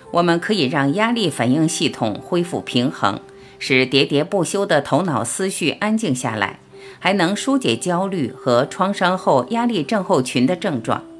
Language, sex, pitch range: Chinese, female, 130-200 Hz